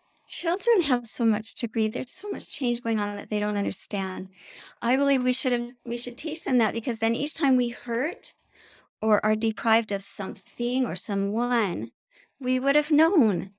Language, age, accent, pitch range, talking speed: English, 50-69, American, 205-250 Hz, 180 wpm